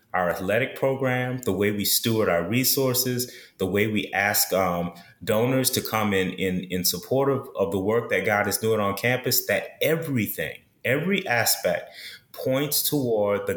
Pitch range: 95-125 Hz